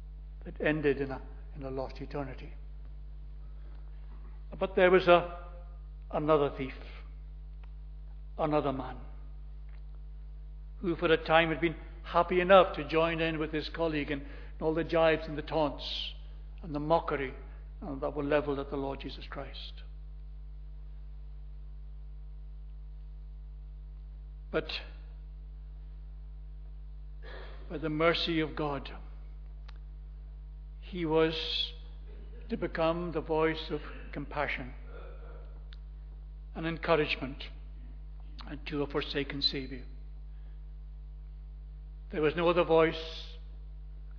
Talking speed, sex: 105 wpm, male